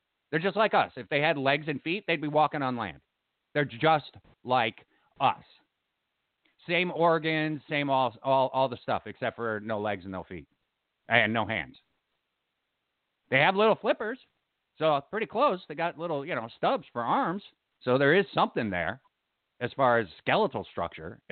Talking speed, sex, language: 175 wpm, male, English